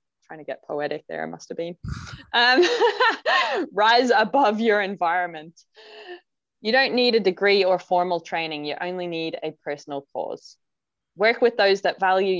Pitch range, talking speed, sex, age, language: 165-220 Hz, 160 wpm, female, 20-39, English